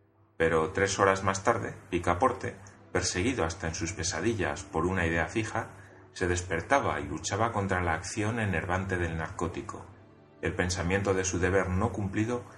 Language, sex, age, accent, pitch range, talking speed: Spanish, male, 30-49, Spanish, 85-105 Hz, 155 wpm